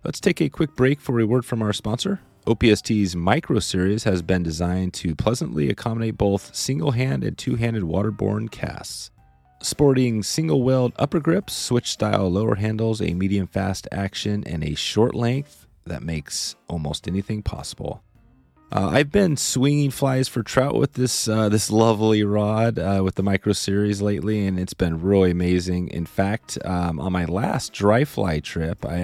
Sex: male